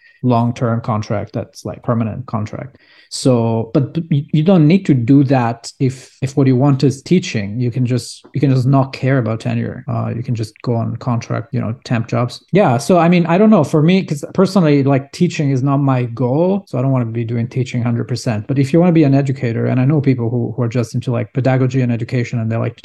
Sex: male